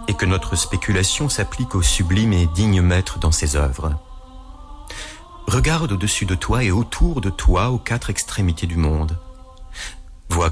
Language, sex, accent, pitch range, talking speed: French, male, French, 85-120 Hz, 155 wpm